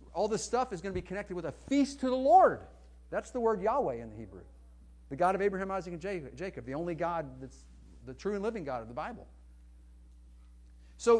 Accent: American